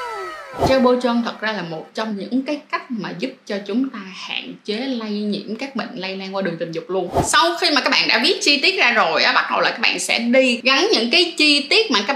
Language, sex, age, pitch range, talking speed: Vietnamese, female, 20-39, 210-285 Hz, 260 wpm